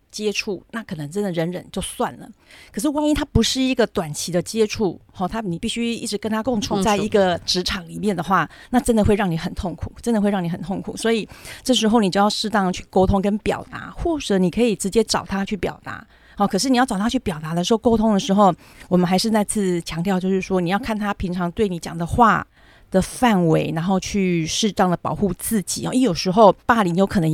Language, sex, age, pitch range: Chinese, female, 30-49, 180-225 Hz